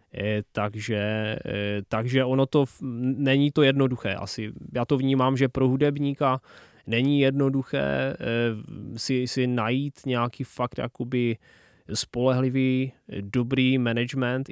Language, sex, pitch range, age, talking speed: Czech, male, 110-130 Hz, 20-39, 100 wpm